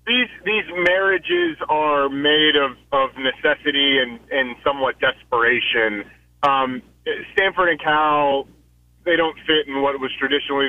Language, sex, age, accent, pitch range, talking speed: English, male, 30-49, American, 130-165 Hz, 130 wpm